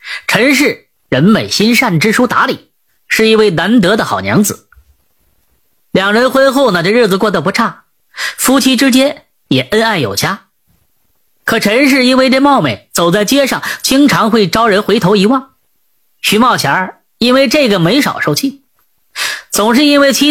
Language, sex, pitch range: Chinese, female, 190-260 Hz